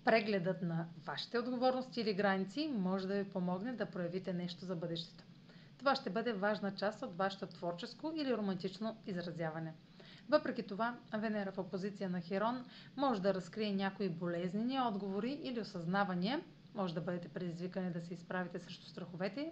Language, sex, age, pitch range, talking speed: Bulgarian, female, 30-49, 180-225 Hz, 155 wpm